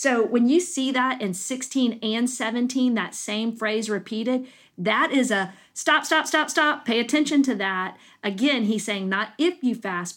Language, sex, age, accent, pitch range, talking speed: English, female, 40-59, American, 200-250 Hz, 185 wpm